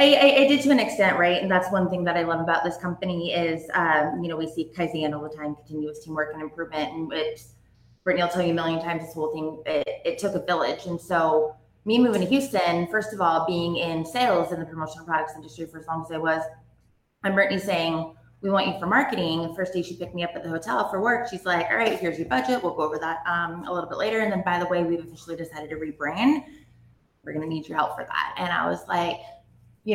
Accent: American